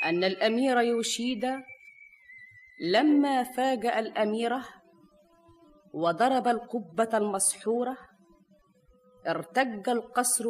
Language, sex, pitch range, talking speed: Arabic, female, 185-250 Hz, 65 wpm